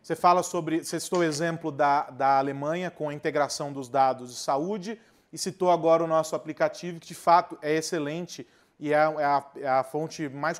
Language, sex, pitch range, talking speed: Portuguese, male, 155-205 Hz, 200 wpm